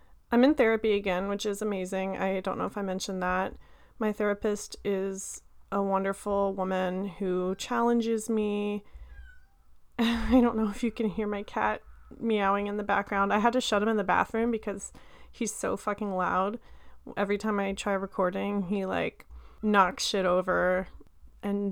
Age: 30-49